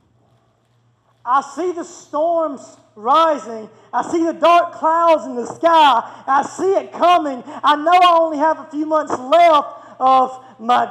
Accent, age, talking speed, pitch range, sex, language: American, 30-49, 155 wpm, 200-315 Hz, male, English